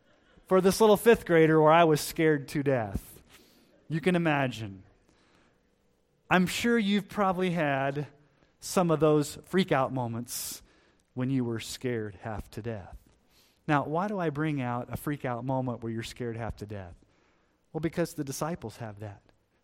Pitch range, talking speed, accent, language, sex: 125-180 Hz, 160 wpm, American, English, male